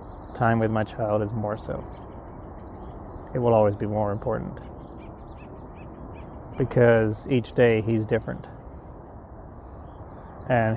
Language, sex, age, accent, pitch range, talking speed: English, male, 30-49, American, 105-120 Hz, 105 wpm